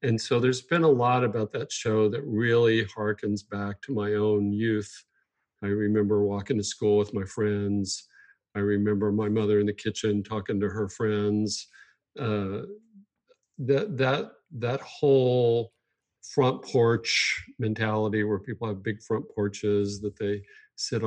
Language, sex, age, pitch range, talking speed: English, male, 50-69, 100-115 Hz, 150 wpm